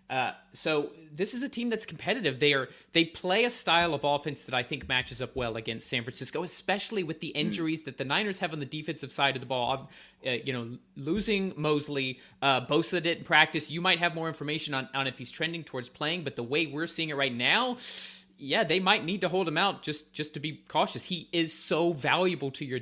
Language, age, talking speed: English, 30-49, 235 wpm